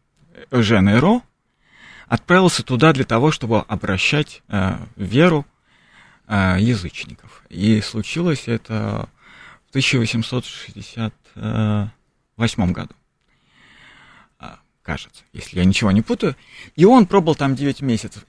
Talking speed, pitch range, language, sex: 95 wpm, 105-140 Hz, Russian, male